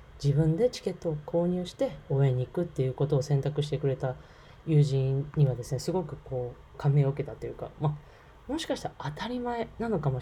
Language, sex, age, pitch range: Japanese, female, 20-39, 130-170 Hz